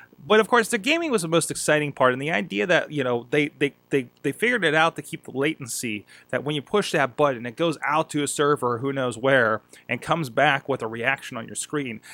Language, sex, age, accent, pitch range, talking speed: English, male, 30-49, American, 130-165 Hz, 240 wpm